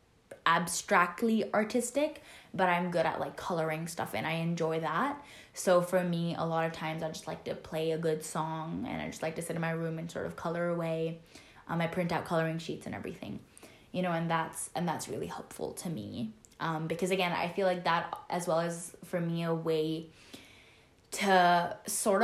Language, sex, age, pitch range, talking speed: English, female, 10-29, 160-180 Hz, 205 wpm